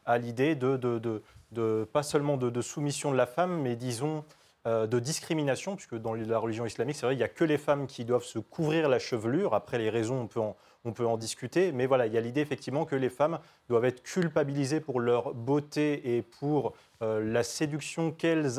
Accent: French